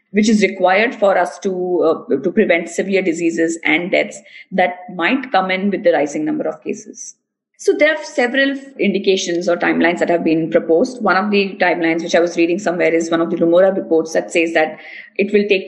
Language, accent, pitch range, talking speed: English, Indian, 170-215 Hz, 210 wpm